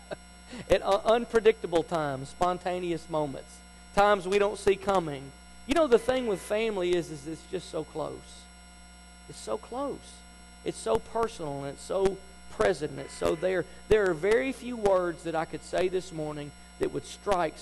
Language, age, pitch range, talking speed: English, 40-59, 140-205 Hz, 175 wpm